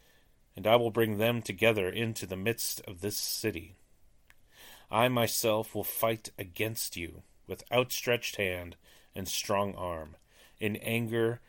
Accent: American